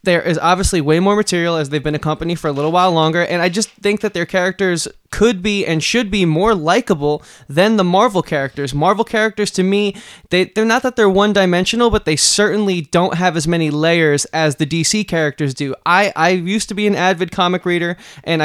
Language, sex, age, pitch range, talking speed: English, male, 20-39, 155-195 Hz, 220 wpm